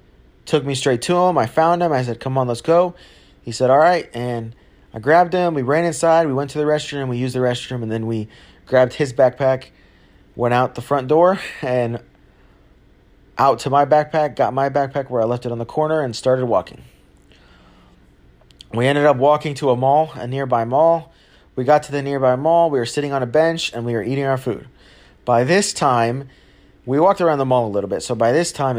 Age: 30-49